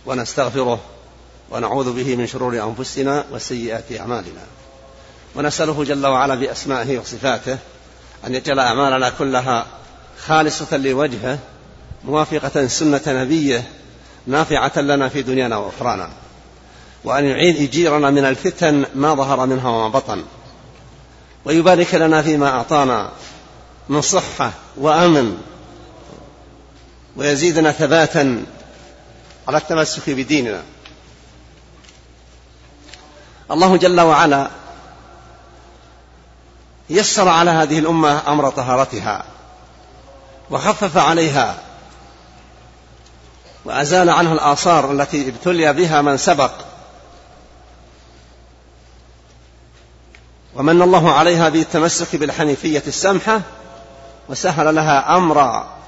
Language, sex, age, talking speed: Arabic, male, 50-69, 85 wpm